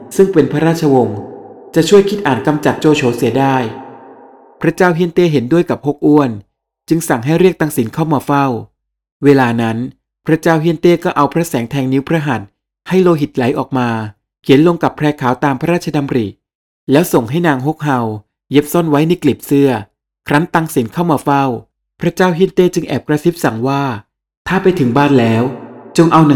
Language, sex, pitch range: Thai, male, 120-160 Hz